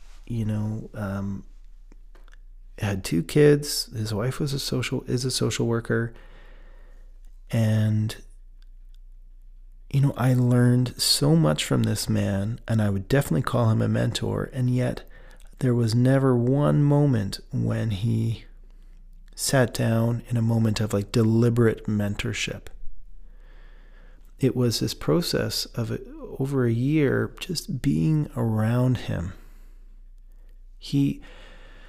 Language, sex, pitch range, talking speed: English, male, 95-125 Hz, 120 wpm